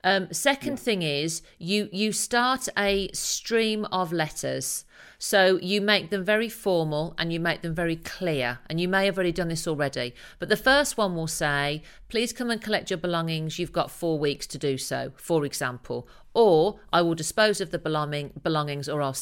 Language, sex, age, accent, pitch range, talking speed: English, female, 50-69, British, 160-210 Hz, 190 wpm